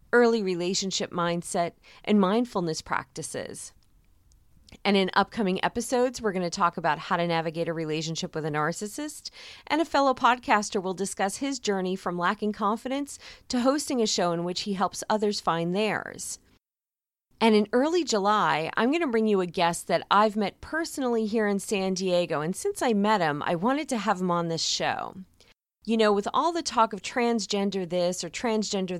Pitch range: 175-230 Hz